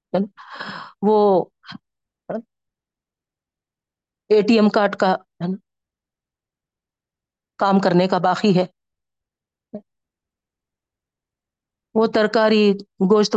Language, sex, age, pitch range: Urdu, female, 50-69, 185-225 Hz